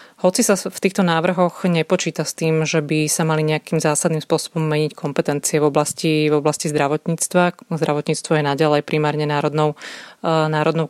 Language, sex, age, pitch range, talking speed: Slovak, female, 30-49, 150-165 Hz, 155 wpm